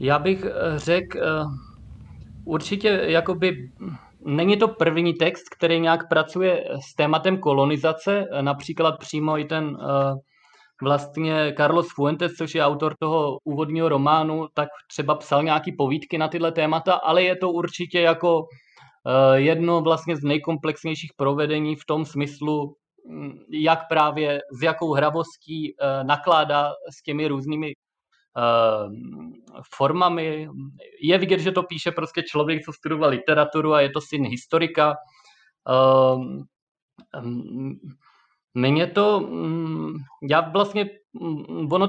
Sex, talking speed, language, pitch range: male, 110 wpm, Czech, 145-165 Hz